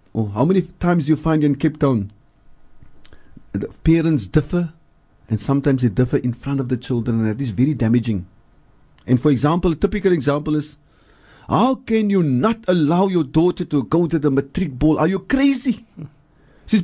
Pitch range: 135-200 Hz